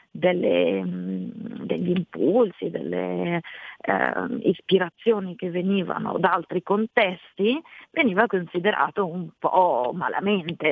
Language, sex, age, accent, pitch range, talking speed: Italian, female, 40-59, native, 175-230 Hz, 90 wpm